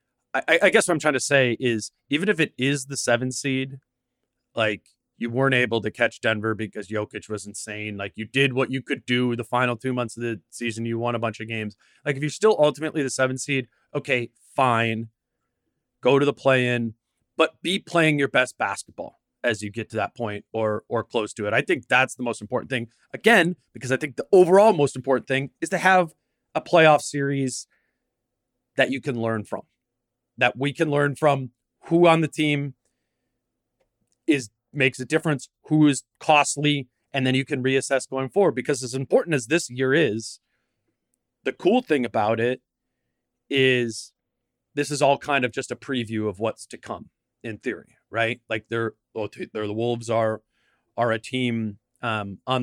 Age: 30-49